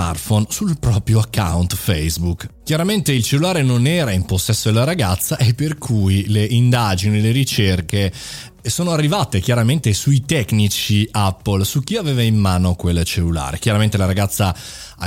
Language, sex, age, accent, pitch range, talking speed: Italian, male, 30-49, native, 100-140 Hz, 145 wpm